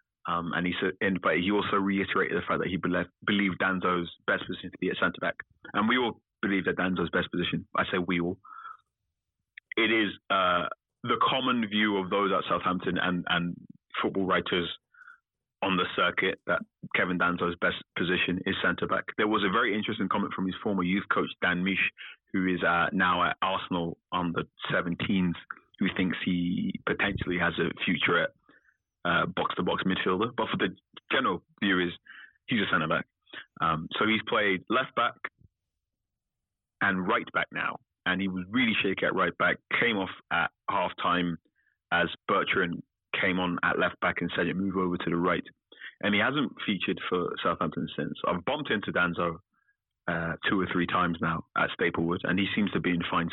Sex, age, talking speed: male, 30-49, 190 wpm